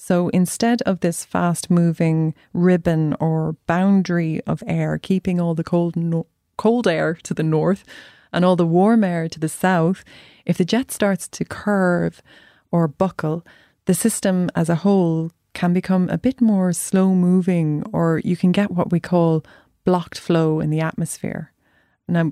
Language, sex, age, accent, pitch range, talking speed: English, female, 30-49, Irish, 160-185 Hz, 165 wpm